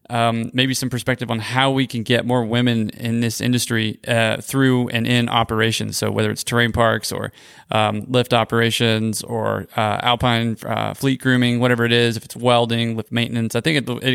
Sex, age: male, 20-39